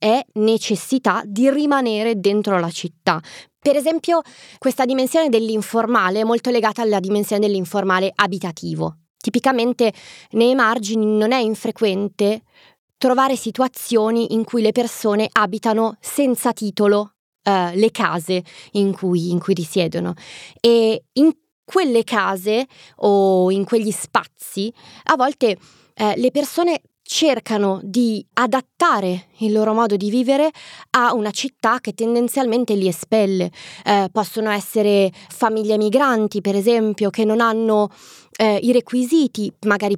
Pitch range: 200-240 Hz